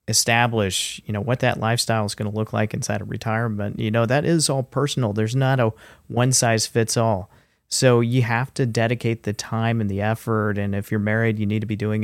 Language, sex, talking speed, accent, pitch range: English, male, 230 wpm, American, 105-125 Hz